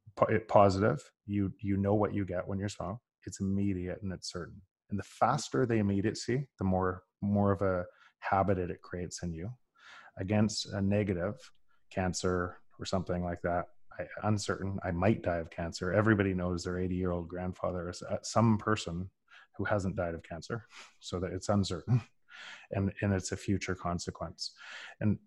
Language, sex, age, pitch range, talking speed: English, male, 20-39, 90-105 Hz, 175 wpm